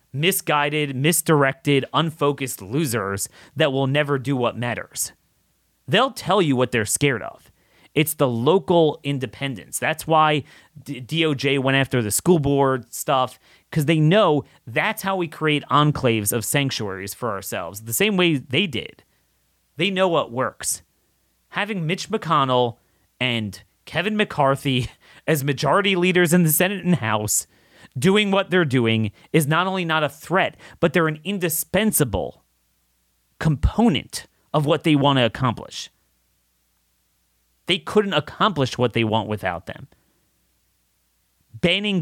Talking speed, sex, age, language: 135 wpm, male, 30-49, English